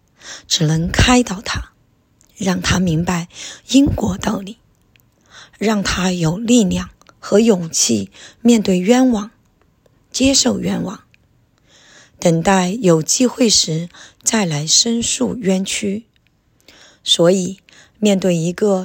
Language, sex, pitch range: Chinese, female, 175-225 Hz